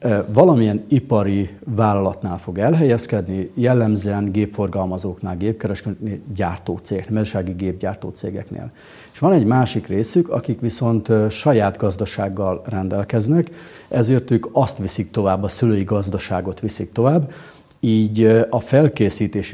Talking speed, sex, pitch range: 110 wpm, male, 95-115 Hz